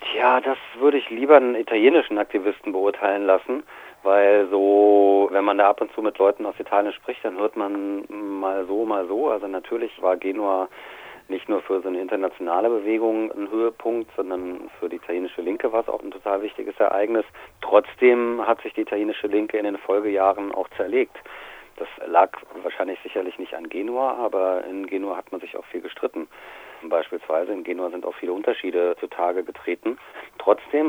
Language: German